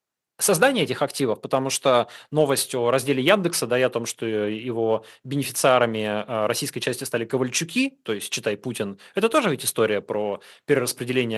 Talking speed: 160 wpm